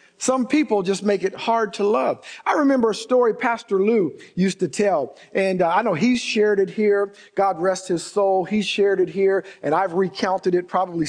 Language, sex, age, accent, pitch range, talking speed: English, male, 50-69, American, 180-220 Hz, 205 wpm